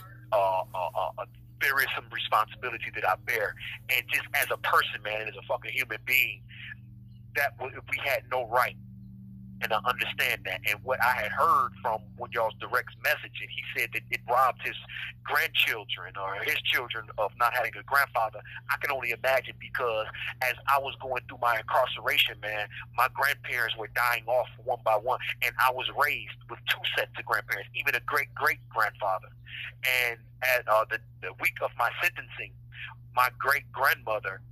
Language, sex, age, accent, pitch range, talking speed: English, male, 30-49, American, 115-125 Hz, 170 wpm